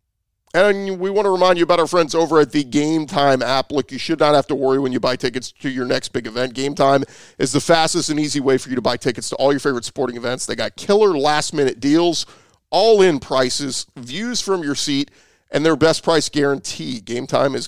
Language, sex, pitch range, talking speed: English, male, 125-160 Hz, 225 wpm